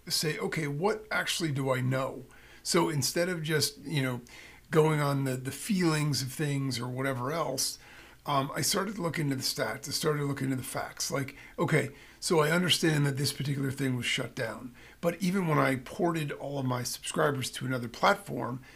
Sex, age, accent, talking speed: male, 40-59, American, 190 wpm